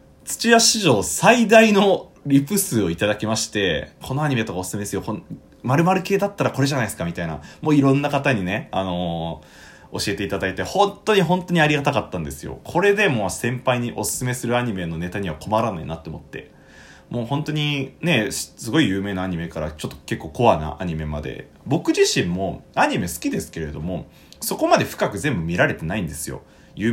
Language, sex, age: Japanese, male, 20-39